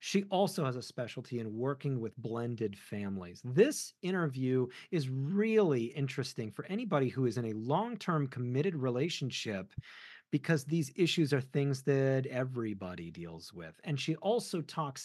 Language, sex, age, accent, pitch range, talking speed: English, male, 40-59, American, 130-190 Hz, 150 wpm